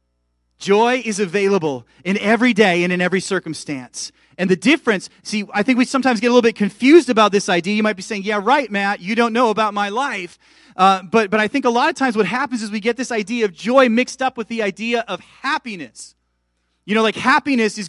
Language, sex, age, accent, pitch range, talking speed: English, male, 30-49, American, 145-220 Hz, 230 wpm